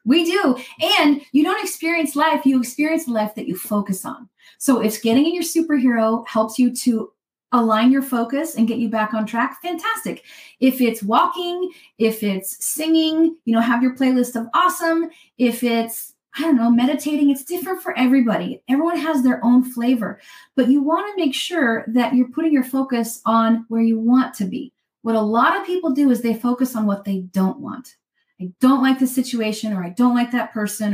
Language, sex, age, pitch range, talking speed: English, female, 30-49, 225-285 Hz, 200 wpm